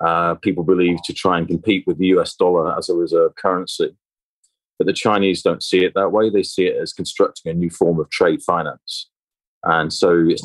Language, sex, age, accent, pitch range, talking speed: Spanish, male, 30-49, British, 85-115 Hz, 210 wpm